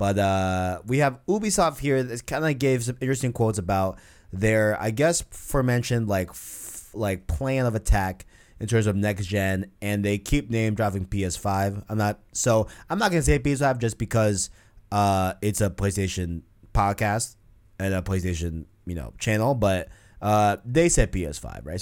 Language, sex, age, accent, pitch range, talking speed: English, male, 20-39, American, 100-125 Hz, 170 wpm